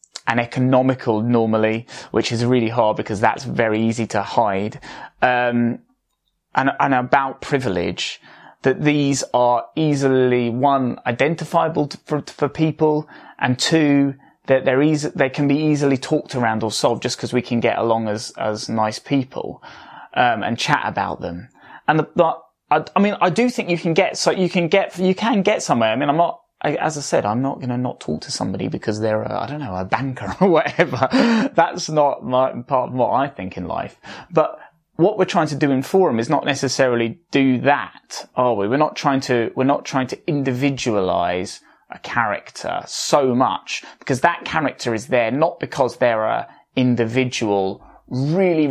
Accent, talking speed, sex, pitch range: British, 185 wpm, male, 120-150 Hz